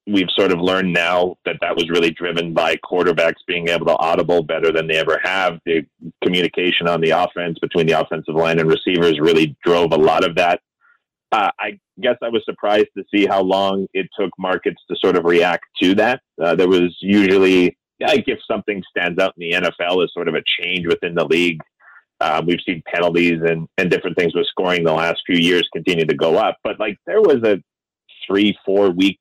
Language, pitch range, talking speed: English, 85-110 Hz, 210 wpm